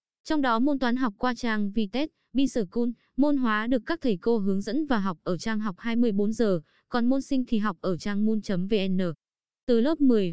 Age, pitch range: 20-39, 190-250 Hz